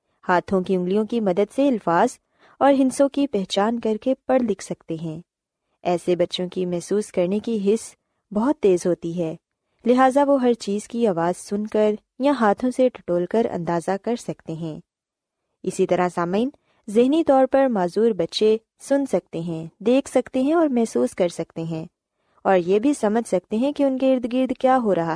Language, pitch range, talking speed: Urdu, 180-250 Hz, 185 wpm